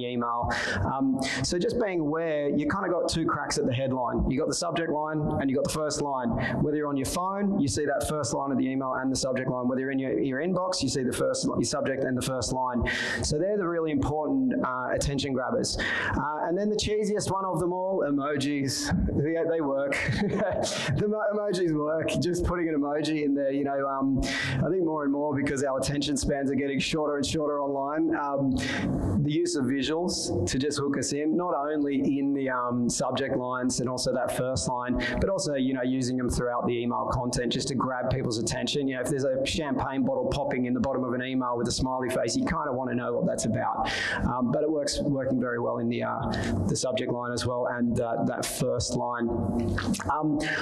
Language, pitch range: English, 130-155 Hz